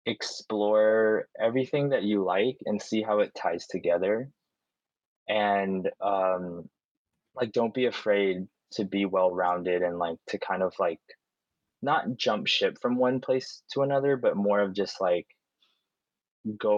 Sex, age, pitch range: male, 20-39, 90-105 Hz